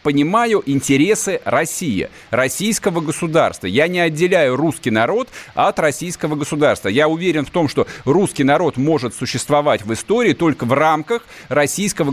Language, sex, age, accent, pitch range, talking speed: Russian, male, 40-59, native, 145-190 Hz, 140 wpm